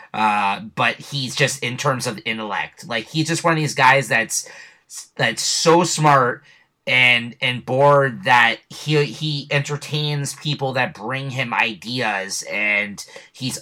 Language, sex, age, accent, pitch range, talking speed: English, male, 30-49, American, 115-140 Hz, 145 wpm